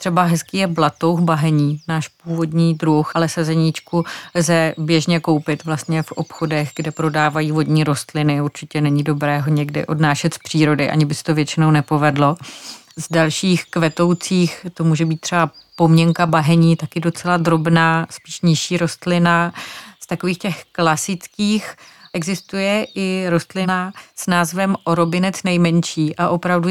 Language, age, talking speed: Czech, 30-49, 140 wpm